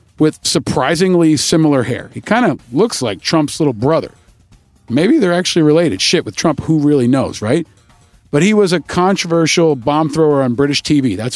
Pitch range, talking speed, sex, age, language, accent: 130-165 Hz, 180 wpm, male, 50-69, English, American